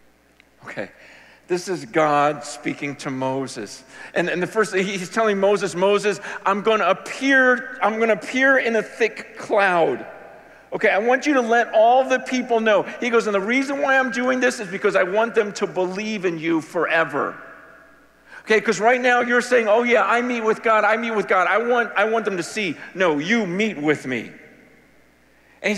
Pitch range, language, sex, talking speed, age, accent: 200-255 Hz, English, male, 195 wpm, 50-69, American